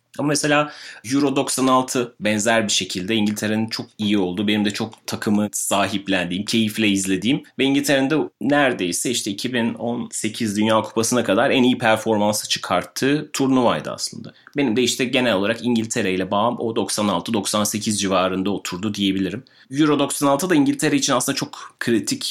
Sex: male